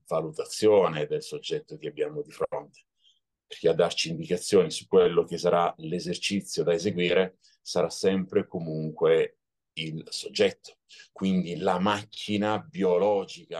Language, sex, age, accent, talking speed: Italian, male, 40-59, native, 120 wpm